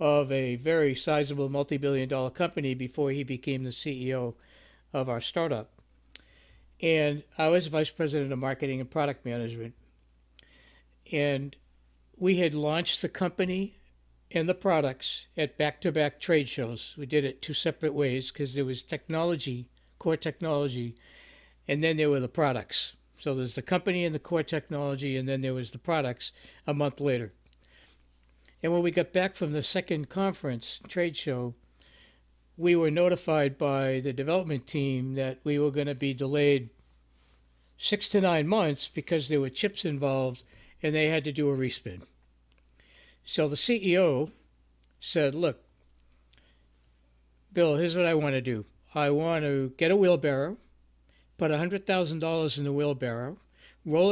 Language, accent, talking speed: English, American, 150 wpm